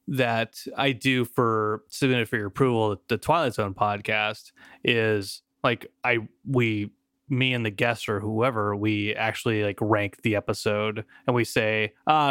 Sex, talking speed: male, 155 wpm